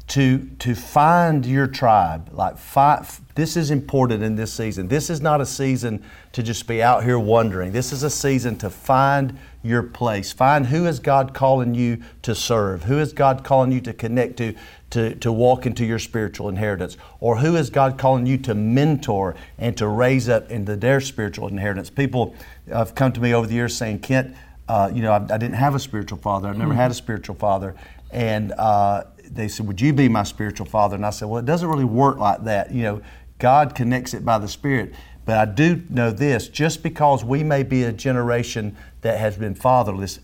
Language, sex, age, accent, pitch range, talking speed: English, male, 50-69, American, 105-135 Hz, 210 wpm